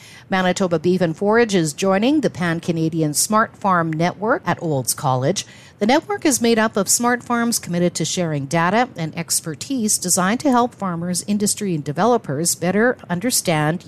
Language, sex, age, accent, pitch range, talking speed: English, female, 50-69, American, 155-215 Hz, 160 wpm